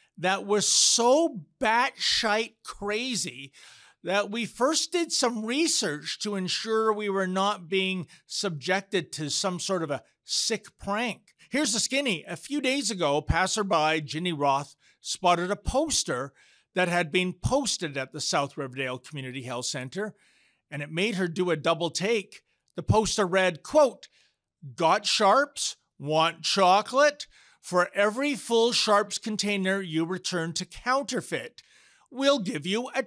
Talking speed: 145 wpm